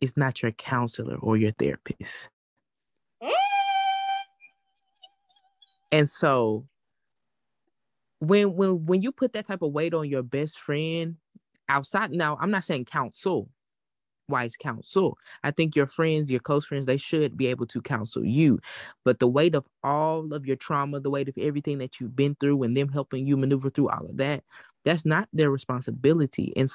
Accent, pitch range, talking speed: American, 130-160 Hz, 165 wpm